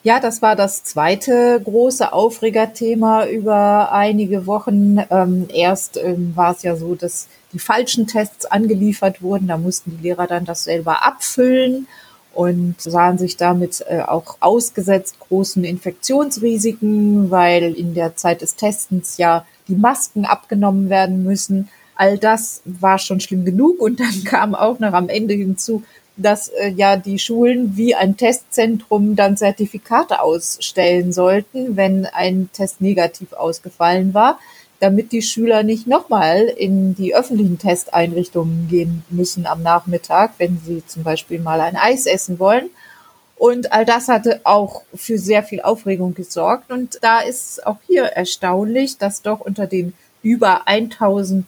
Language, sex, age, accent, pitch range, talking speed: German, female, 30-49, German, 180-220 Hz, 145 wpm